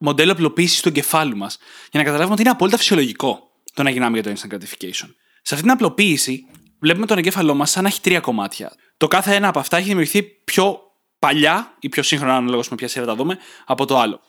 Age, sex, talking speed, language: 20-39, male, 220 wpm, Greek